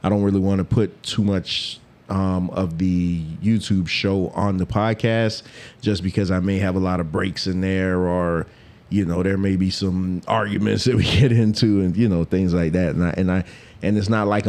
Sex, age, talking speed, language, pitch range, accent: male, 30-49, 220 wpm, English, 95-115 Hz, American